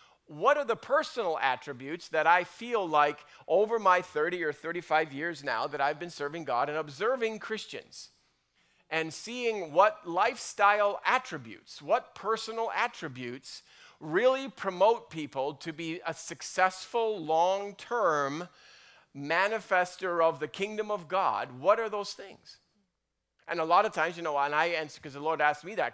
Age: 40-59